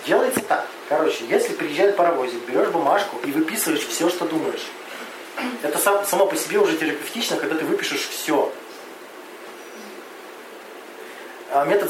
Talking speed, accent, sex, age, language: 120 wpm, native, male, 20-39, Russian